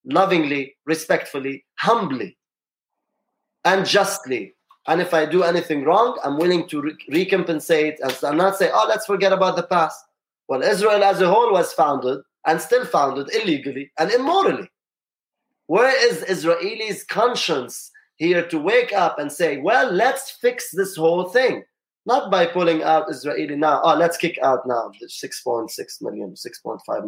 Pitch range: 160-205 Hz